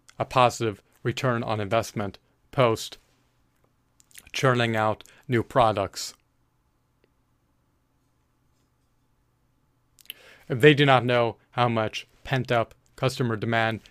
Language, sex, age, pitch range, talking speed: English, male, 30-49, 115-130 Hz, 80 wpm